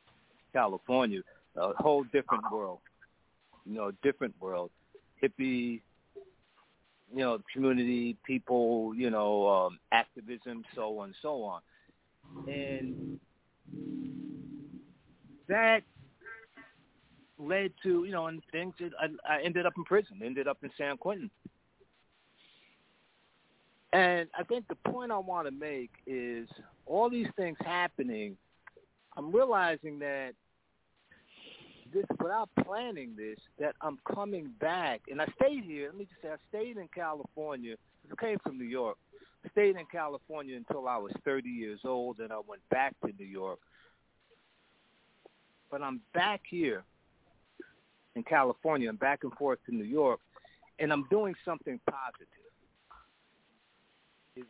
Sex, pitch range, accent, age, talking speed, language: male, 125-195 Hz, American, 50-69, 135 wpm, English